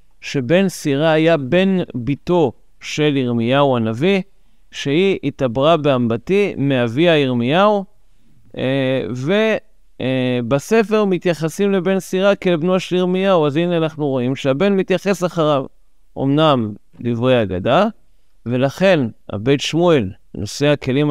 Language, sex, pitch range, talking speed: Hebrew, male, 130-170 Hz, 100 wpm